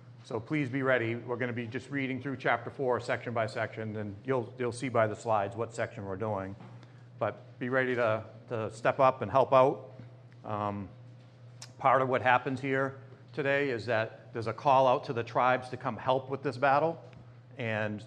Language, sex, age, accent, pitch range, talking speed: English, male, 40-59, American, 115-130 Hz, 200 wpm